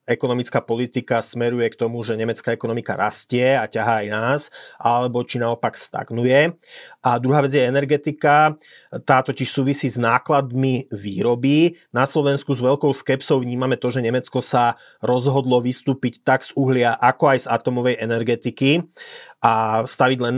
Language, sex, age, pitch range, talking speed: Slovak, male, 30-49, 125-140 Hz, 150 wpm